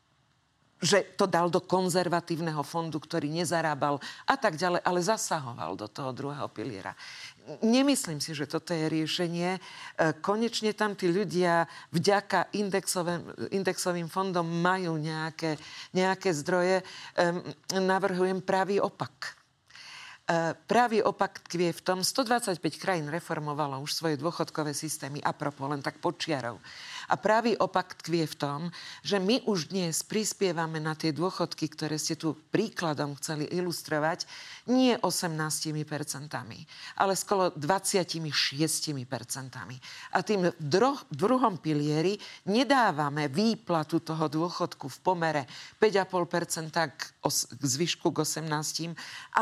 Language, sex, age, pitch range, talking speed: Slovak, female, 50-69, 155-190 Hz, 115 wpm